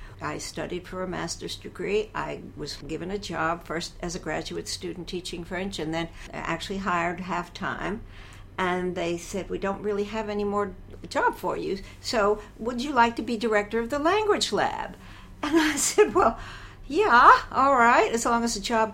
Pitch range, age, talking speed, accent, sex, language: 175-235 Hz, 60-79, 185 wpm, American, female, English